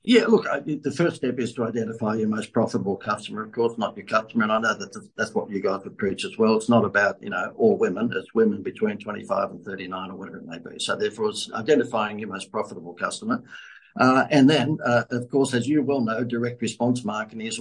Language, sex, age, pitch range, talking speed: English, male, 60-79, 115-150 Hz, 240 wpm